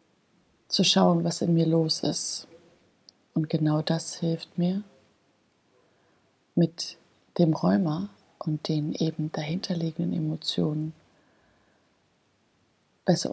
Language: German